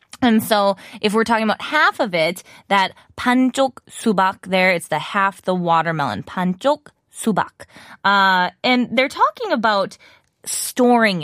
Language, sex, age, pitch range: Korean, female, 20-39, 185-260 Hz